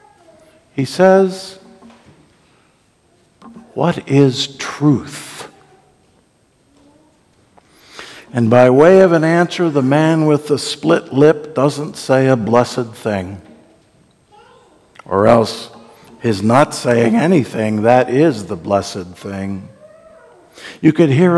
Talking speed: 100 wpm